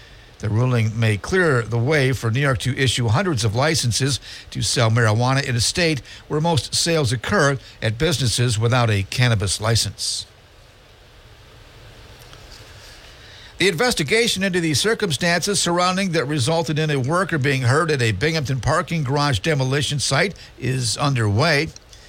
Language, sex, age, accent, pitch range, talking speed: English, male, 60-79, American, 110-140 Hz, 140 wpm